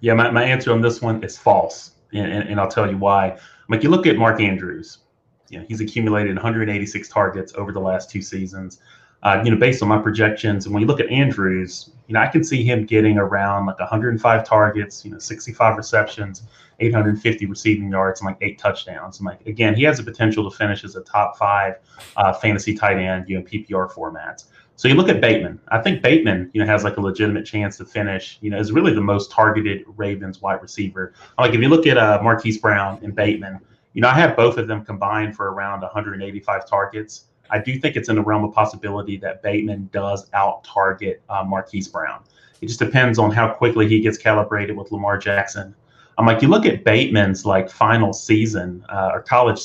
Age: 30-49